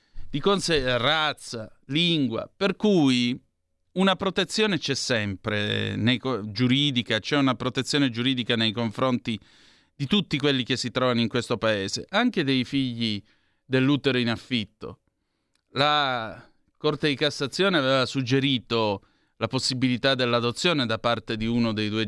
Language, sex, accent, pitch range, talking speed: Italian, male, native, 120-155 Hz, 125 wpm